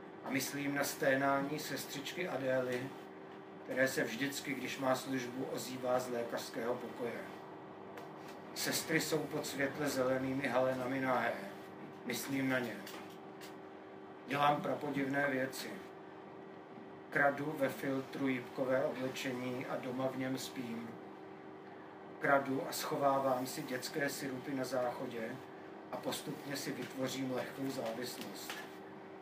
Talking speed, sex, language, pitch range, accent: 110 wpm, male, Czech, 95-140 Hz, native